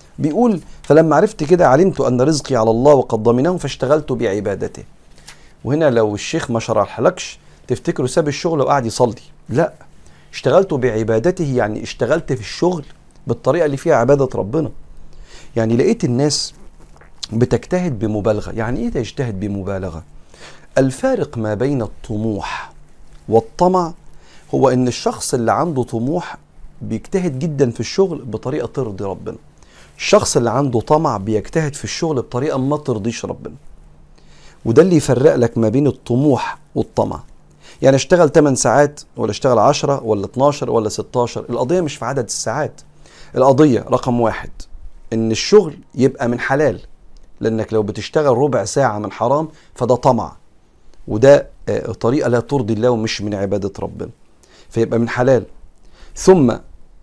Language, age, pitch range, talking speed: Arabic, 40-59, 110-145 Hz, 135 wpm